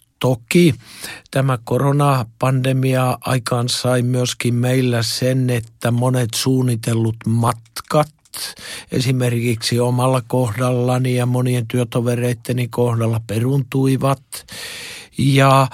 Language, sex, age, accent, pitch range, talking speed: Finnish, male, 50-69, native, 125-145 Hz, 80 wpm